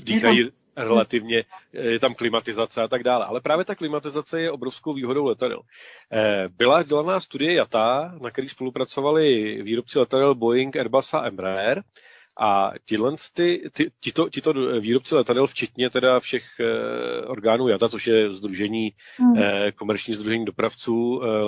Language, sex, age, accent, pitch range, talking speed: Czech, male, 40-59, native, 115-145 Hz, 140 wpm